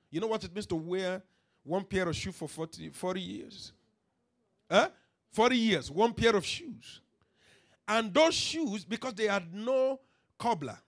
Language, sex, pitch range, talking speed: English, male, 170-235 Hz, 165 wpm